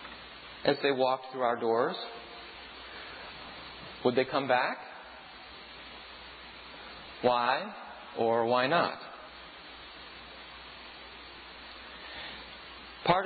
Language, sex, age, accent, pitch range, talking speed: English, male, 40-59, American, 125-155 Hz, 70 wpm